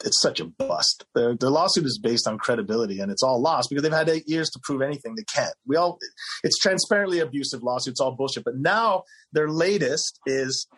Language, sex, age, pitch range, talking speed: English, male, 30-49, 140-190 Hz, 210 wpm